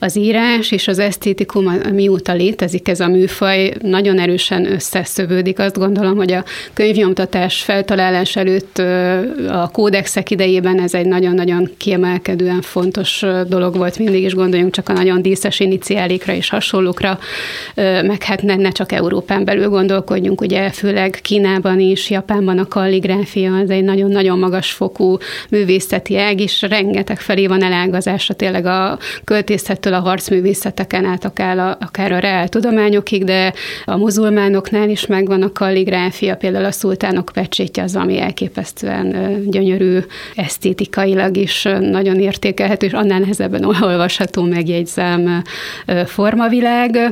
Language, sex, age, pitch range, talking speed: Hungarian, female, 30-49, 185-200 Hz, 130 wpm